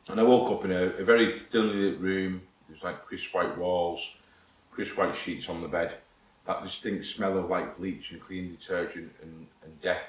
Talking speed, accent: 200 wpm, British